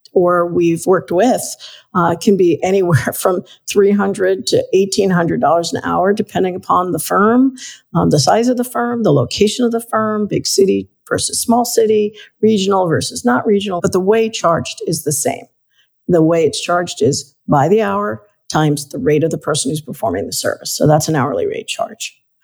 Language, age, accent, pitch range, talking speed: English, 50-69, American, 155-210 Hz, 185 wpm